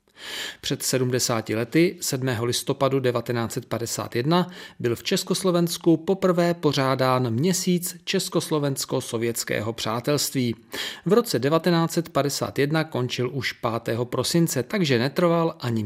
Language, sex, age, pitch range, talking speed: Czech, male, 40-59, 115-160 Hz, 90 wpm